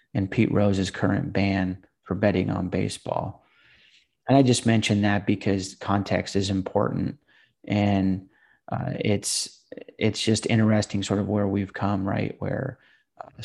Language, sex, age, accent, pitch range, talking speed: English, male, 30-49, American, 100-110 Hz, 145 wpm